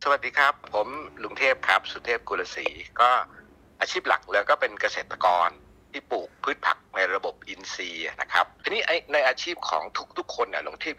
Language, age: Thai, 60-79